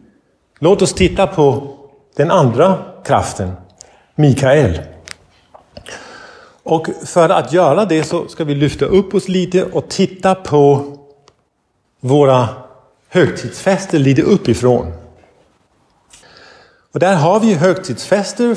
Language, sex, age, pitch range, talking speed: Swedish, male, 50-69, 120-180 Hz, 105 wpm